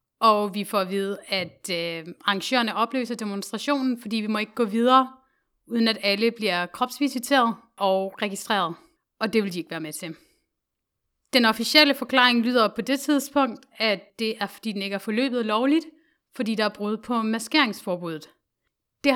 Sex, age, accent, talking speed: female, 30-49, native, 170 wpm